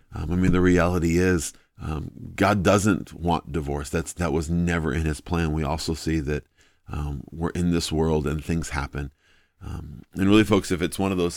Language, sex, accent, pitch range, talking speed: English, male, American, 80-95 Hz, 205 wpm